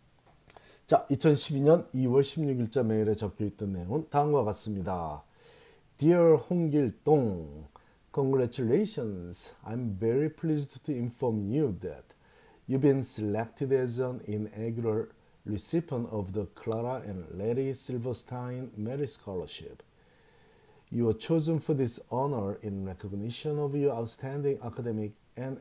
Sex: male